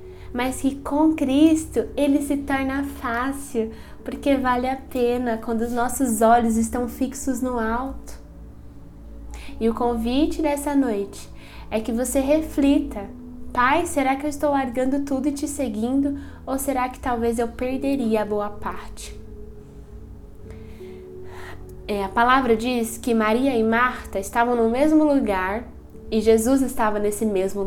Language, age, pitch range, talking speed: Portuguese, 10-29, 195-250 Hz, 140 wpm